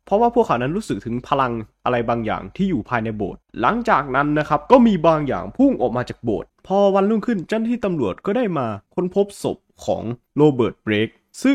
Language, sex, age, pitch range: Thai, male, 20-39, 120-185 Hz